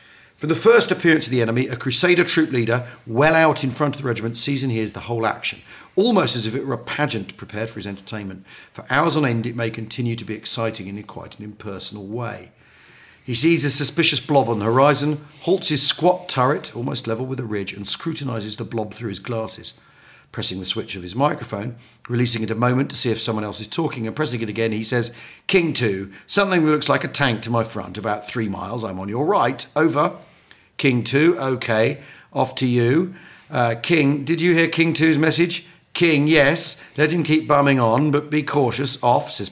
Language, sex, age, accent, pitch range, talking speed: English, male, 40-59, British, 115-155 Hz, 215 wpm